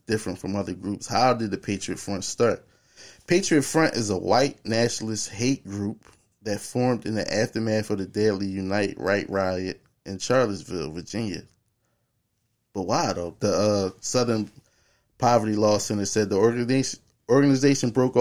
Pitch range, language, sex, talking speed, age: 95-120 Hz, English, male, 150 wpm, 20-39